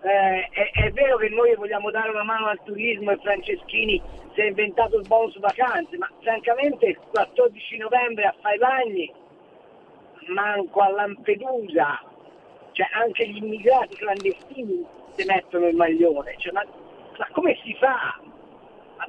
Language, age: Italian, 50-69